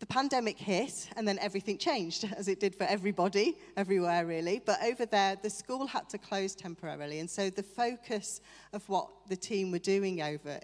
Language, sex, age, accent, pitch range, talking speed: English, female, 40-59, British, 175-210 Hz, 190 wpm